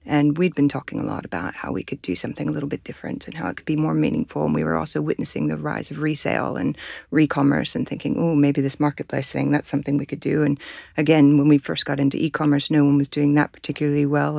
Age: 40-59